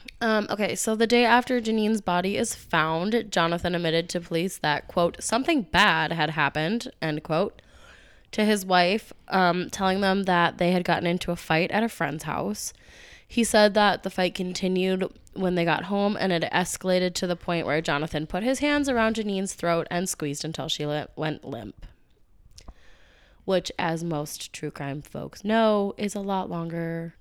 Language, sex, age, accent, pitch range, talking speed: English, female, 20-39, American, 165-215 Hz, 175 wpm